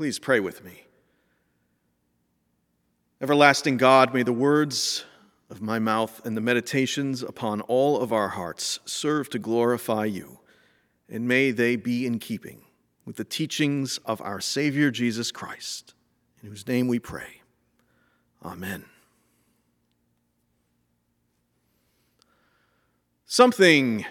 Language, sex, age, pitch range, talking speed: English, male, 40-59, 110-160 Hz, 110 wpm